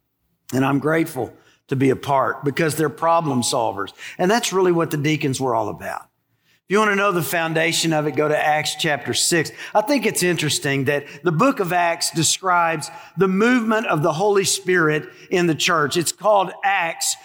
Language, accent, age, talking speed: English, American, 50-69, 195 wpm